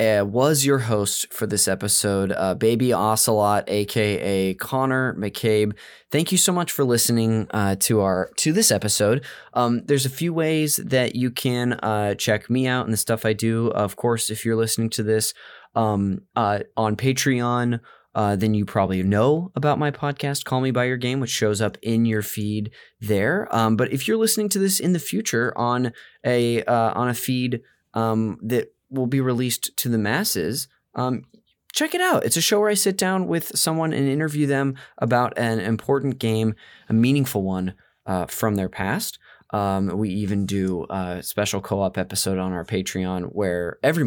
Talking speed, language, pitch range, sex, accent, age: 185 wpm, English, 105-135 Hz, male, American, 20-39